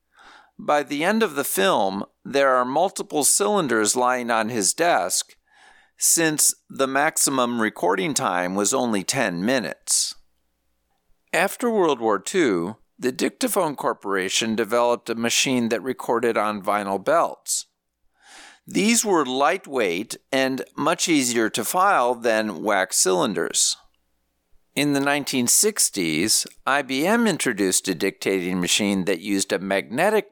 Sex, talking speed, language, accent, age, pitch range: male, 120 wpm, English, American, 50-69, 100-145 Hz